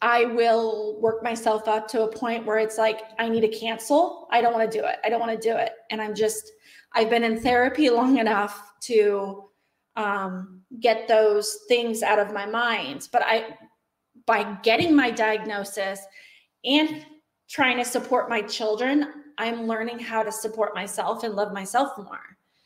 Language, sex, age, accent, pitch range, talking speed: English, female, 20-39, American, 210-245 Hz, 175 wpm